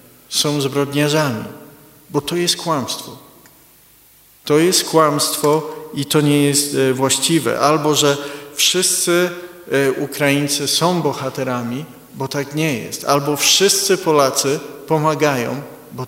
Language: Polish